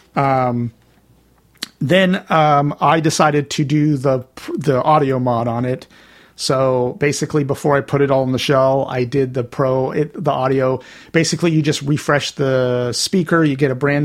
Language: English